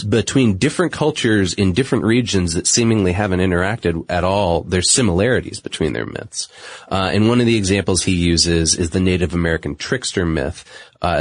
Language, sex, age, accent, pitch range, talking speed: English, male, 30-49, American, 85-105 Hz, 170 wpm